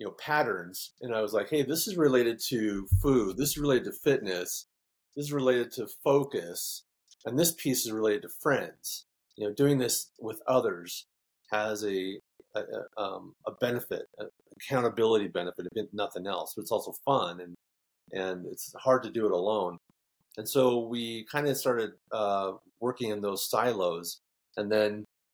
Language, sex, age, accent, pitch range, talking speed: English, male, 30-49, American, 95-135 Hz, 175 wpm